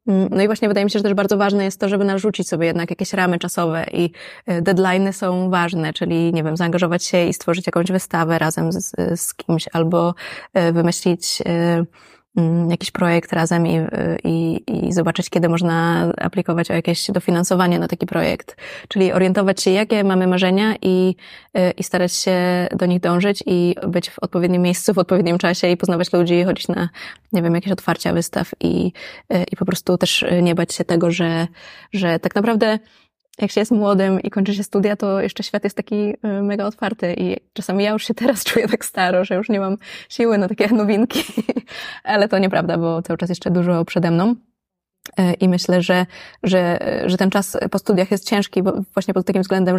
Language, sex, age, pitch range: Polish, female, 20-39, 175-200 Hz